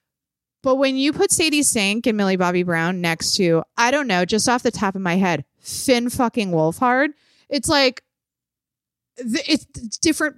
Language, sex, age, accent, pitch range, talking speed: English, female, 20-39, American, 185-265 Hz, 170 wpm